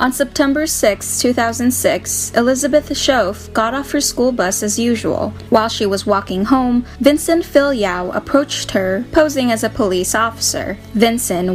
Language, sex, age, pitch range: English, female, 20-39, 205-265 Hz